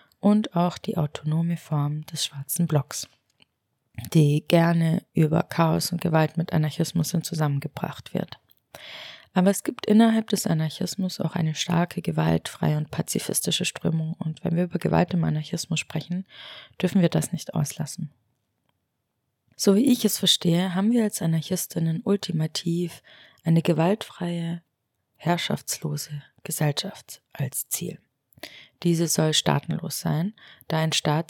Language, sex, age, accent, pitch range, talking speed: German, female, 20-39, German, 155-185 Hz, 130 wpm